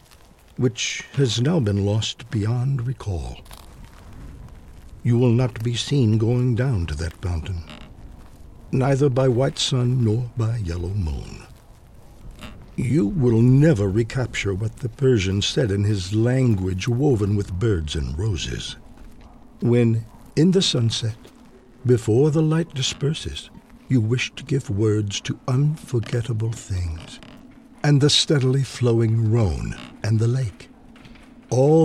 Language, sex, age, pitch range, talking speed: English, male, 60-79, 105-130 Hz, 125 wpm